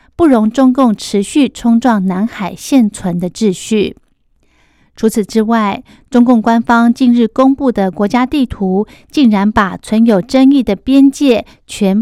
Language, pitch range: Chinese, 200-250 Hz